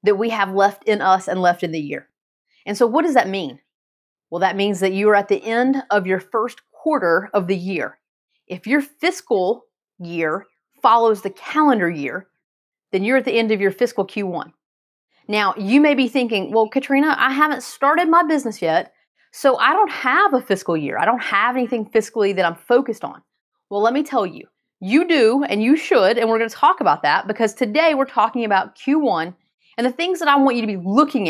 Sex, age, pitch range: female, 30-49, 200-280 Hz